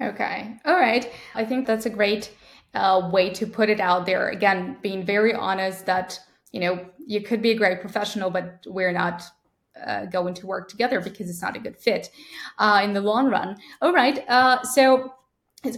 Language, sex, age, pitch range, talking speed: English, female, 10-29, 190-235 Hz, 200 wpm